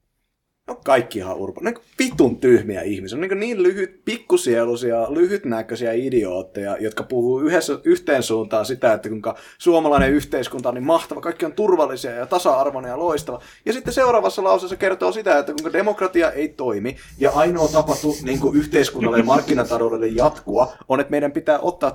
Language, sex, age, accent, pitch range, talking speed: Finnish, male, 20-39, native, 125-190 Hz, 155 wpm